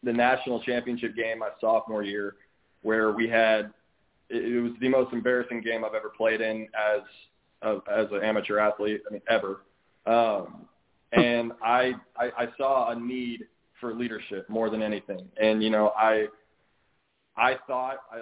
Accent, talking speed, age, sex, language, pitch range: American, 165 wpm, 20-39, male, English, 110-125 Hz